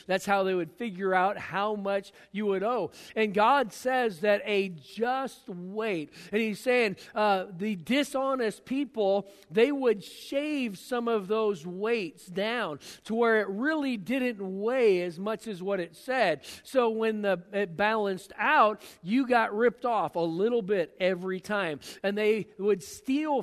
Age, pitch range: 50-69, 195-240 Hz